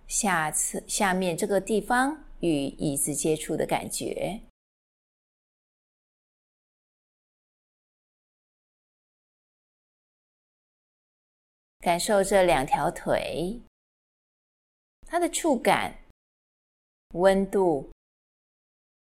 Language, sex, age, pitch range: Chinese, female, 30-49, 160-225 Hz